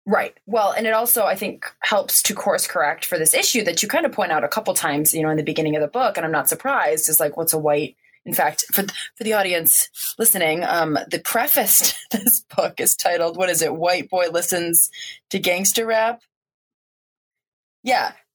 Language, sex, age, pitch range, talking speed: English, female, 20-39, 150-190 Hz, 215 wpm